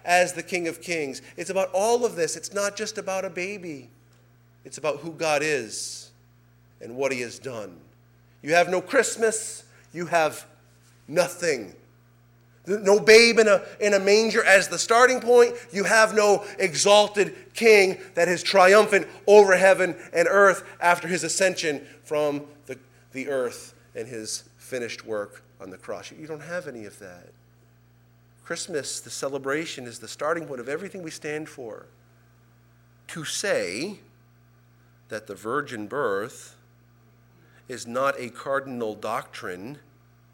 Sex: male